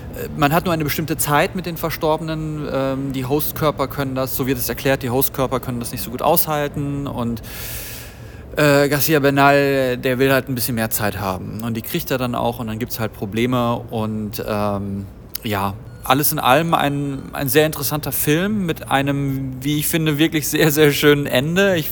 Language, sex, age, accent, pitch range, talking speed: German, male, 40-59, German, 125-150 Hz, 190 wpm